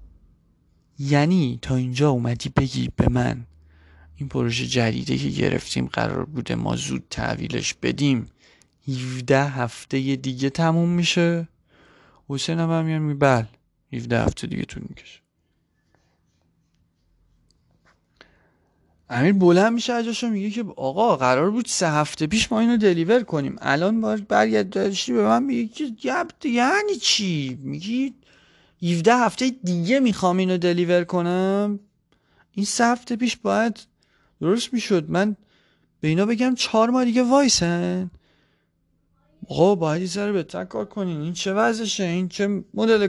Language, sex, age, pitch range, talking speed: Persian, male, 30-49, 125-205 Hz, 130 wpm